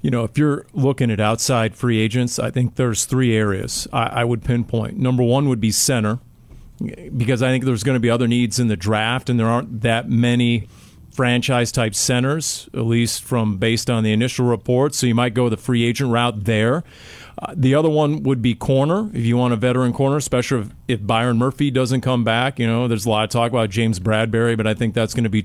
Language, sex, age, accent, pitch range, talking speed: English, male, 40-59, American, 115-135 Hz, 225 wpm